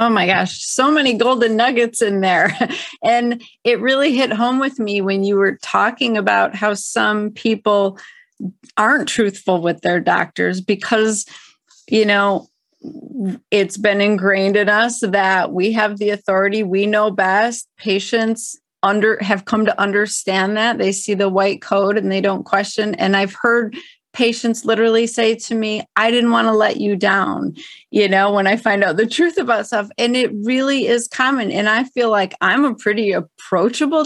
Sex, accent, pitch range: female, American, 200-240 Hz